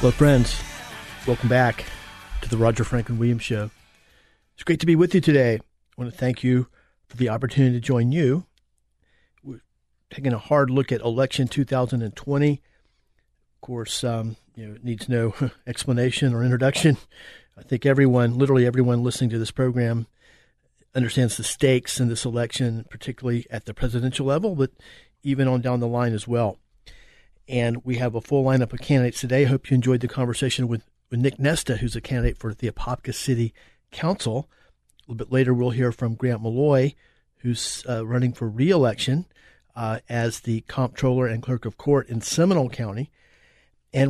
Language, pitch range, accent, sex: English, 115-135 Hz, American, male